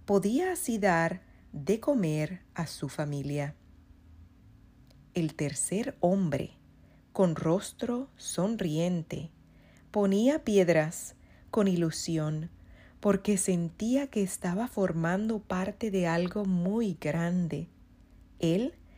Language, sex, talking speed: Spanish, female, 90 wpm